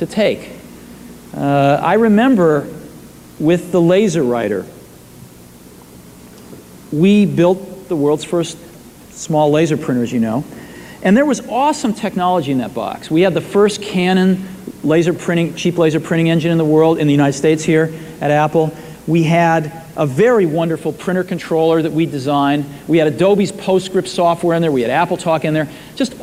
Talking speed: 160 wpm